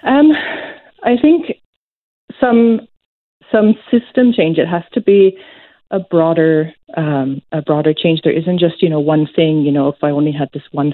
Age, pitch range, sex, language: 30-49, 145-185 Hz, female, English